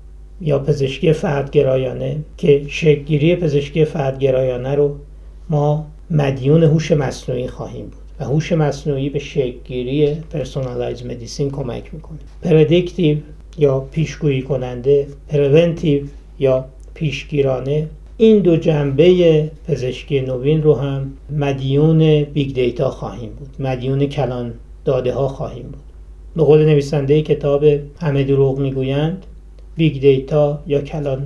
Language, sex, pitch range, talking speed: Persian, male, 135-155 Hz, 115 wpm